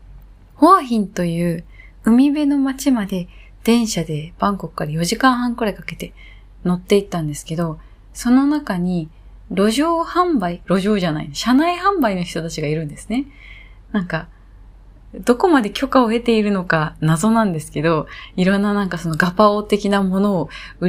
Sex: female